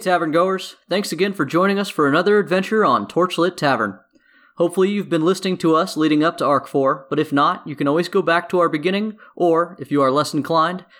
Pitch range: 145-190 Hz